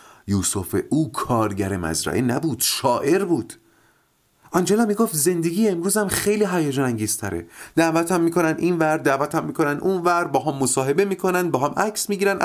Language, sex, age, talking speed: Persian, male, 30-49, 150 wpm